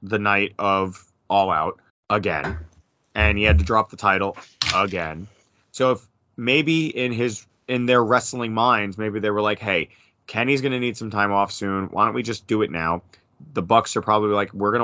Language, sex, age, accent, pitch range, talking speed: English, male, 30-49, American, 100-120 Hz, 200 wpm